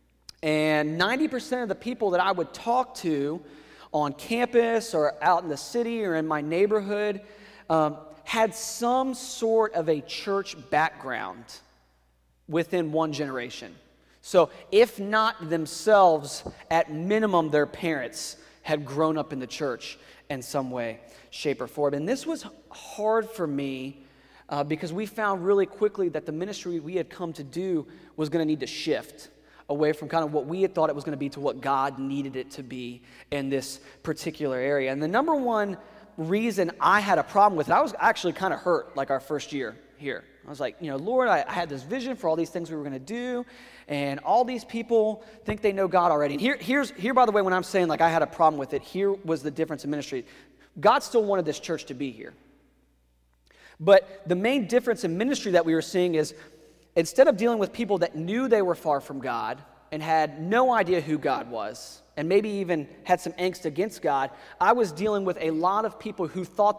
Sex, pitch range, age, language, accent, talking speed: male, 150-210 Hz, 30-49, English, American, 205 wpm